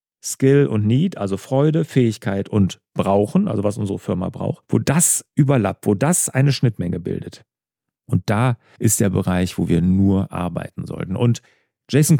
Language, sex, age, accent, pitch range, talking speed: German, male, 40-59, German, 100-150 Hz, 160 wpm